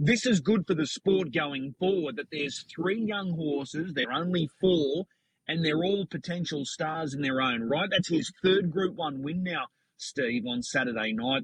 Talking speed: 195 wpm